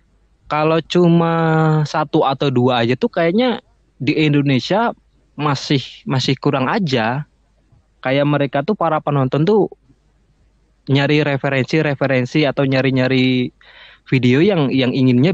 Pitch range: 130-160 Hz